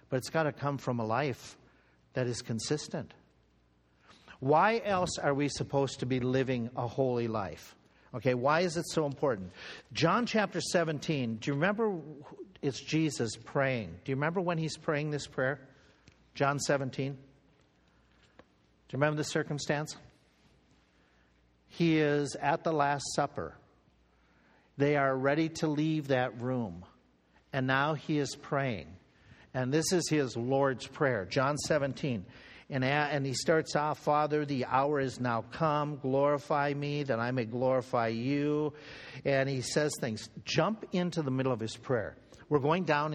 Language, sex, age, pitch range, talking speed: English, male, 50-69, 120-150 Hz, 155 wpm